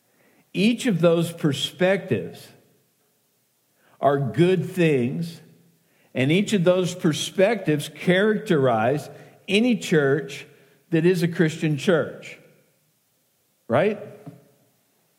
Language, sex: English, male